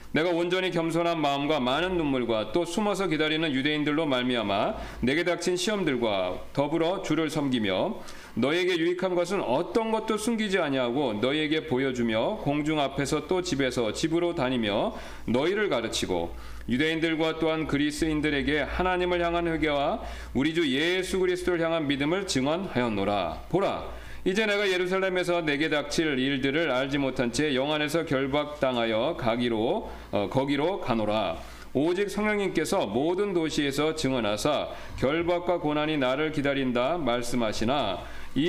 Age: 40-59